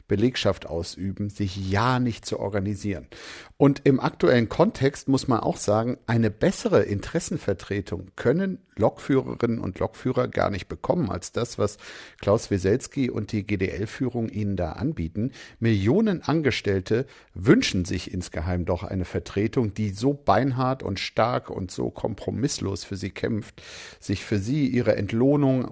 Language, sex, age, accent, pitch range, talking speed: German, male, 50-69, German, 100-125 Hz, 140 wpm